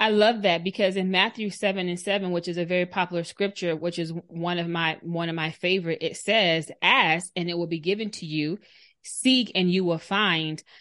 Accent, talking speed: American, 215 wpm